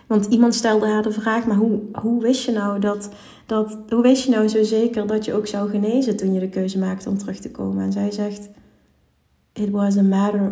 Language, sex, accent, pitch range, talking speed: Dutch, female, Dutch, 195-215 Hz, 200 wpm